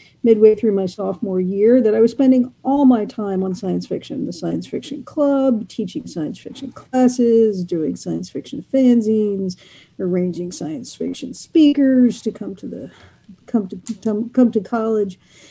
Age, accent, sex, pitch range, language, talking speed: 50-69, American, female, 190-245 Hz, English, 155 wpm